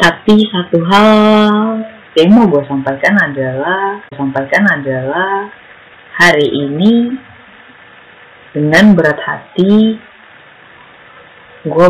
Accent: native